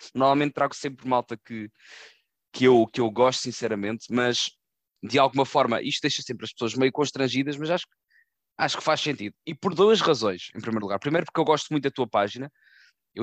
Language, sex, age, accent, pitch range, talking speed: Portuguese, male, 20-39, Portuguese, 115-145 Hz, 205 wpm